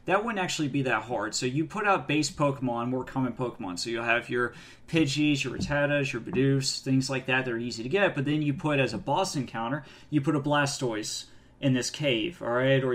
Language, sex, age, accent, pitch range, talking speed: English, male, 20-39, American, 130-155 Hz, 230 wpm